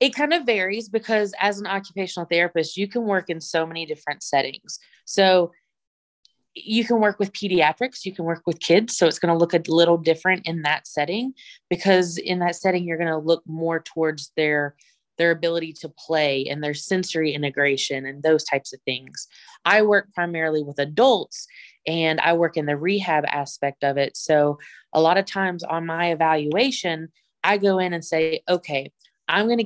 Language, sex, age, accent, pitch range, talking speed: English, female, 20-39, American, 155-195 Hz, 190 wpm